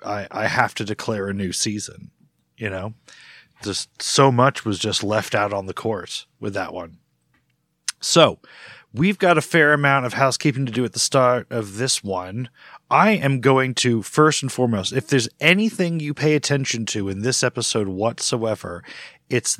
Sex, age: male, 30-49